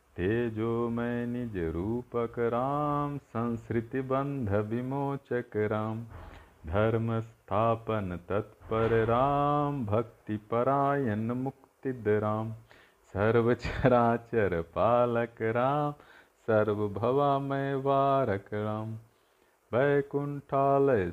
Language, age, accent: Hindi, 40-59, native